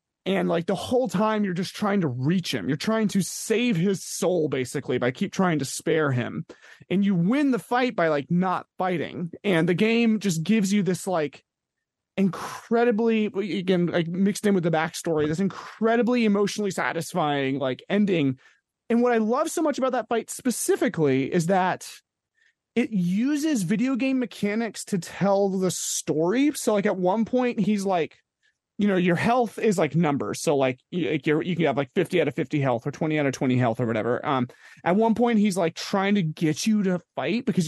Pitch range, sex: 165-220 Hz, male